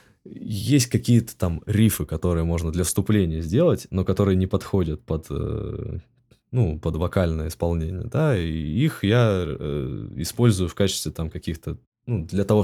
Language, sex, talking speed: Russian, male, 140 wpm